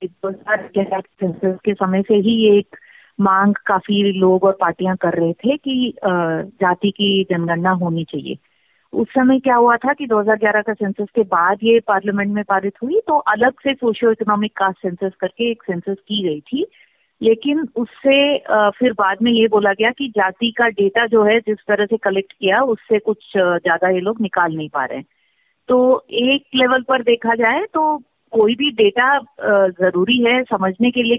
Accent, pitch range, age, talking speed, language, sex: native, 195-240 Hz, 30-49, 185 wpm, Hindi, female